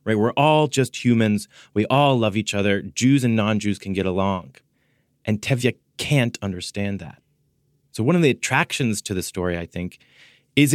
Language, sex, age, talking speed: English, male, 30-49, 180 wpm